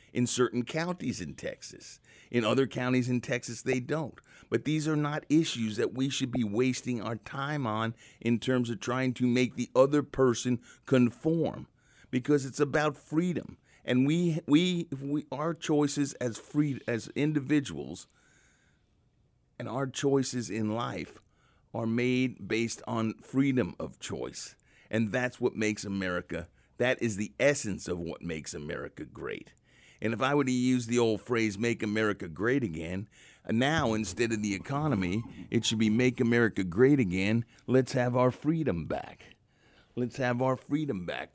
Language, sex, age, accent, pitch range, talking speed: English, male, 50-69, American, 115-140 Hz, 160 wpm